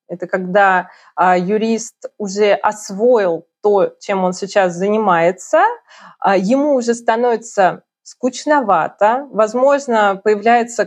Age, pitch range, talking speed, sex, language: 20-39, 195-235 Hz, 90 wpm, female, Russian